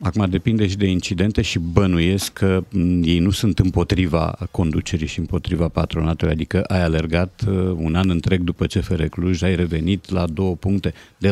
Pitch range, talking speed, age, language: 90-105 Hz, 175 wpm, 50-69, Romanian